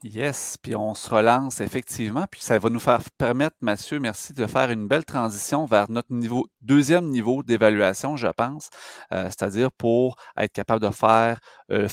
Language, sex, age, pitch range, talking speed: French, male, 30-49, 110-135 Hz, 175 wpm